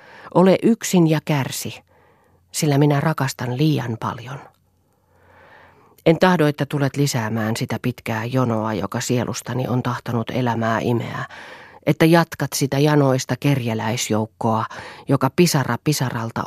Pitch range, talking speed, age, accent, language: 120-150 Hz, 115 wpm, 40-59, native, Finnish